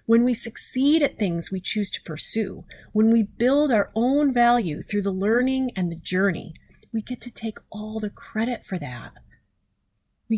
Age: 30-49